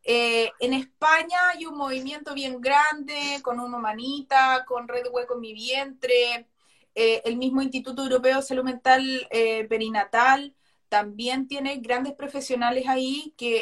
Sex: female